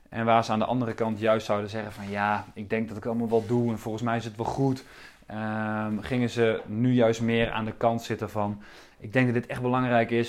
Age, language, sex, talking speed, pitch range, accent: 20-39, Dutch, male, 255 wpm, 110-120 Hz, Dutch